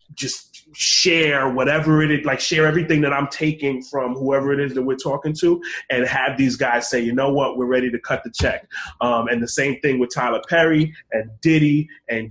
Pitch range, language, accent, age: 120-140 Hz, English, American, 30-49